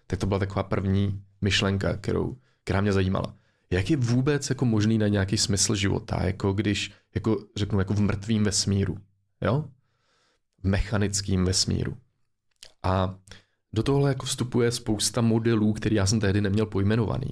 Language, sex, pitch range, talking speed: Czech, male, 95-110 Hz, 150 wpm